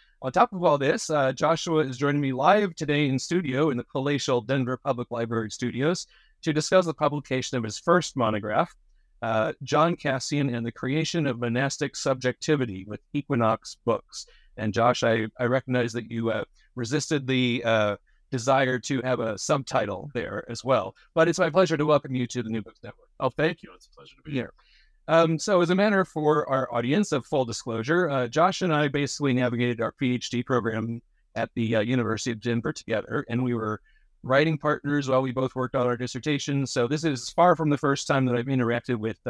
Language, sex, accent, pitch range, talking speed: English, male, American, 120-150 Hz, 205 wpm